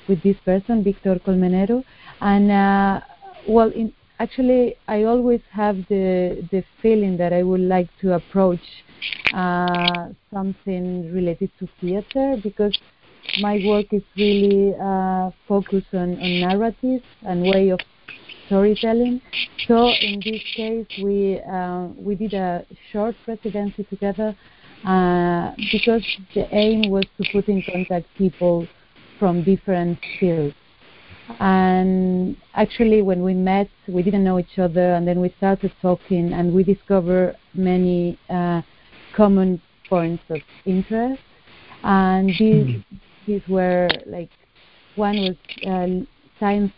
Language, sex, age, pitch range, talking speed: English, female, 40-59, 180-210 Hz, 125 wpm